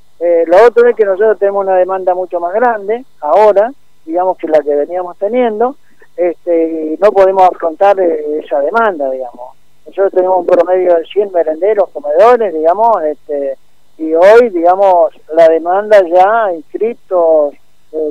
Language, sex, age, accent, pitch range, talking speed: Spanish, male, 50-69, Argentinian, 165-220 Hz, 150 wpm